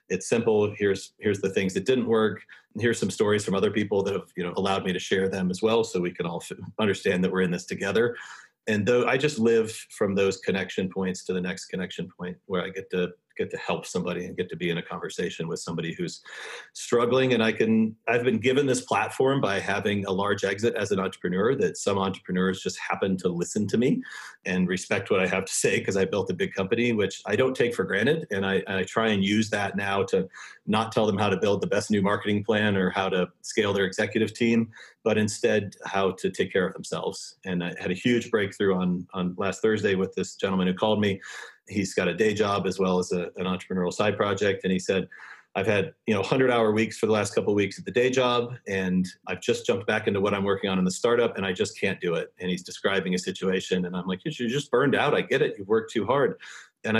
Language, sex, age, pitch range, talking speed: English, male, 40-59, 95-115 Hz, 250 wpm